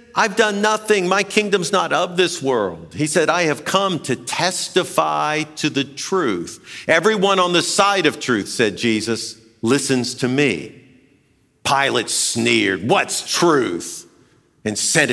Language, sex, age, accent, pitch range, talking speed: English, male, 50-69, American, 125-200 Hz, 145 wpm